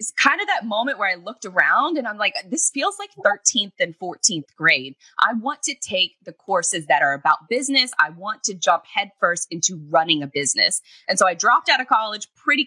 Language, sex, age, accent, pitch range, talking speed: English, female, 20-39, American, 175-265 Hz, 220 wpm